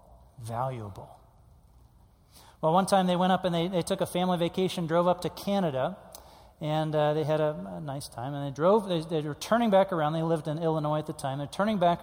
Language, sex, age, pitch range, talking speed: English, male, 40-59, 145-180 Hz, 225 wpm